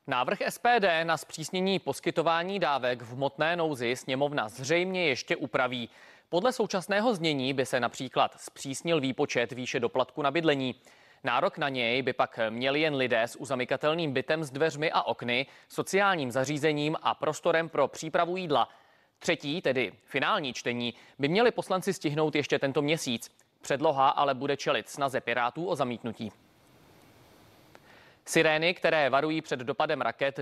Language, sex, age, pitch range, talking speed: Czech, male, 30-49, 125-155 Hz, 140 wpm